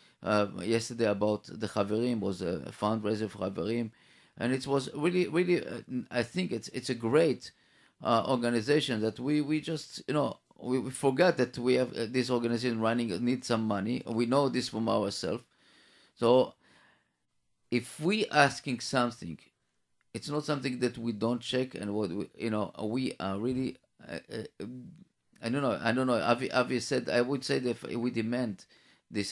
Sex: male